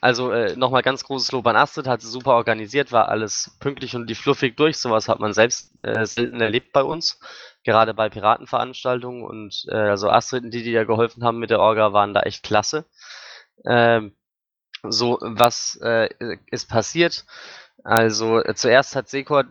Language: German